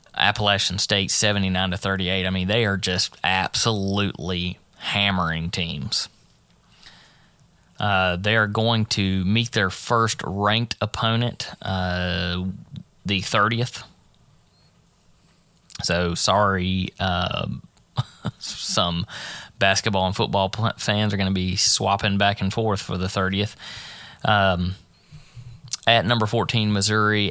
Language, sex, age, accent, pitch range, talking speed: English, male, 20-39, American, 95-115 Hz, 110 wpm